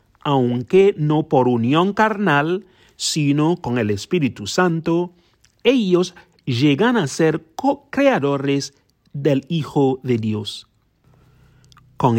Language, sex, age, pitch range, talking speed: English, male, 40-59, 125-180 Hz, 100 wpm